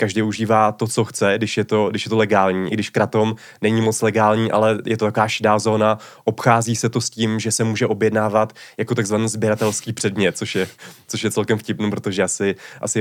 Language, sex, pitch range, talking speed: Czech, male, 100-115 Hz, 215 wpm